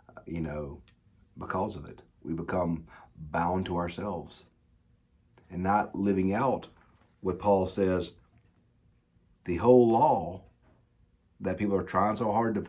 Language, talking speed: English, 130 wpm